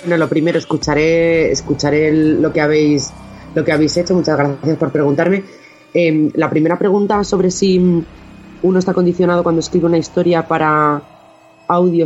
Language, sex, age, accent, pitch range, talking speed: Spanish, female, 30-49, Spanish, 145-175 Hz, 160 wpm